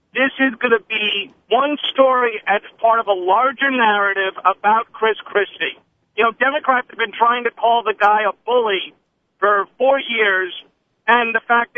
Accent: American